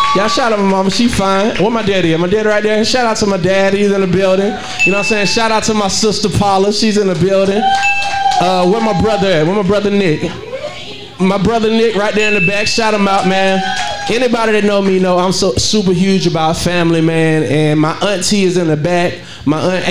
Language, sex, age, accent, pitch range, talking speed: English, male, 20-39, American, 145-195 Hz, 240 wpm